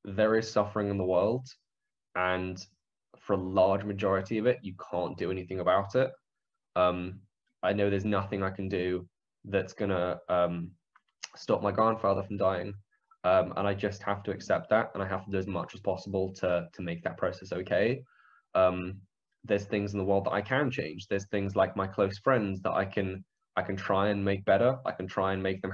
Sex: male